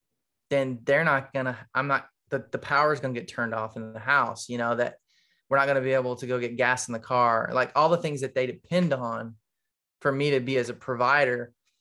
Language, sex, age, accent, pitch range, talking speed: English, male, 20-39, American, 120-135 Hz, 250 wpm